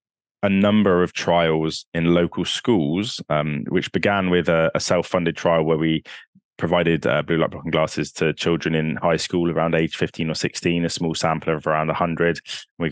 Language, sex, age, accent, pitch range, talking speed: English, male, 20-39, British, 75-85 Hz, 185 wpm